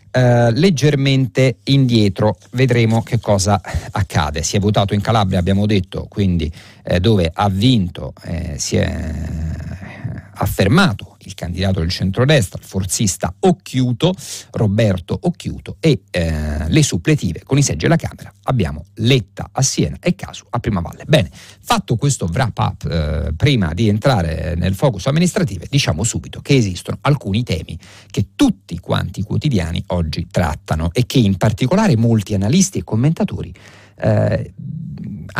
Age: 50-69